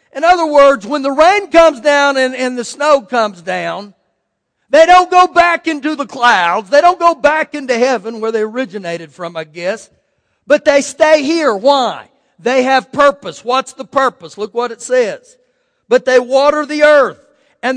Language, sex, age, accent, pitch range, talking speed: English, male, 50-69, American, 255-305 Hz, 180 wpm